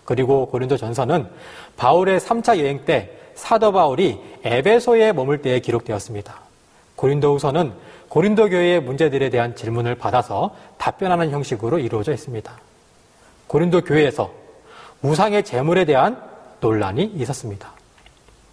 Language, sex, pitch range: Korean, male, 130-205 Hz